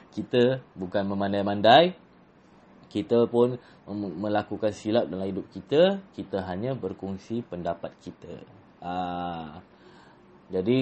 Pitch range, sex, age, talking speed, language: 100-155 Hz, male, 20-39, 100 wpm, Malay